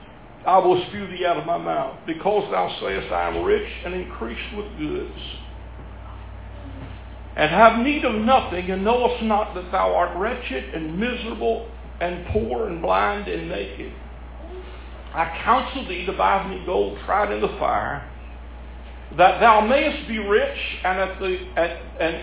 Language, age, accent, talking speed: English, 60-79, American, 160 wpm